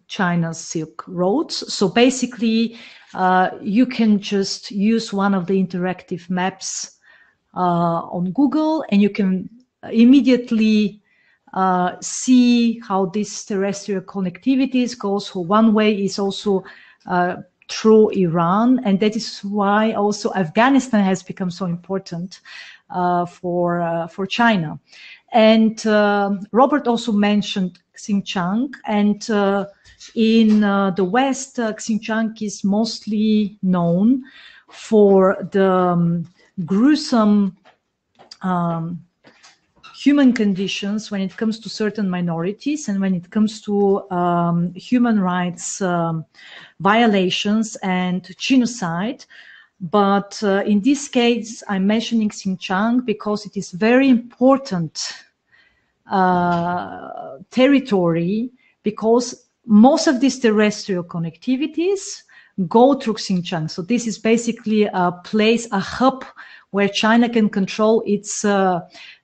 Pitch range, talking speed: 185-230 Hz, 115 wpm